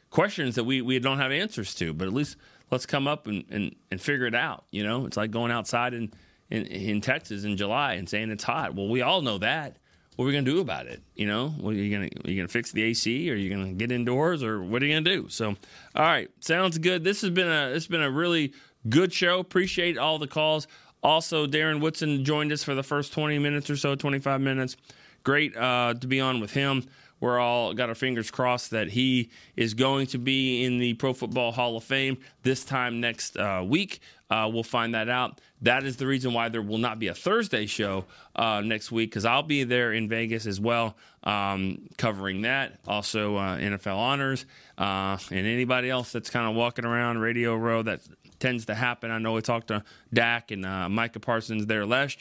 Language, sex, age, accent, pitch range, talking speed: English, male, 30-49, American, 110-135 Hz, 230 wpm